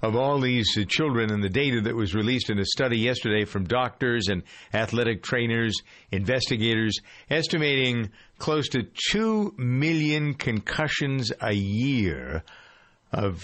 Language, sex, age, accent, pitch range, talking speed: English, male, 50-69, American, 110-145 Hz, 130 wpm